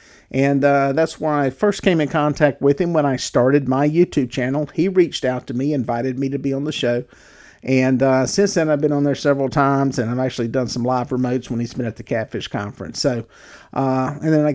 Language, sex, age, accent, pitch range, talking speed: English, male, 50-69, American, 125-160 Hz, 240 wpm